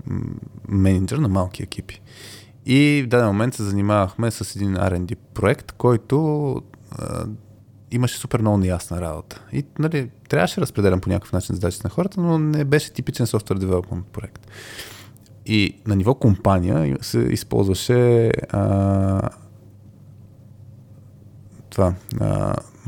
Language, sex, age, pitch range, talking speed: Bulgarian, male, 20-39, 100-120 Hz, 125 wpm